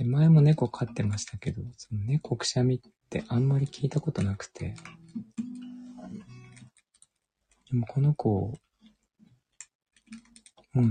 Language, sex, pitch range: Japanese, male, 105-145 Hz